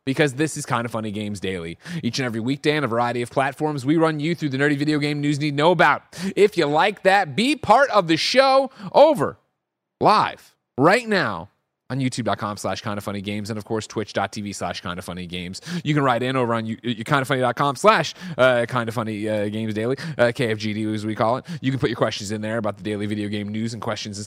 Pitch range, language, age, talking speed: 110-160 Hz, English, 30-49, 235 wpm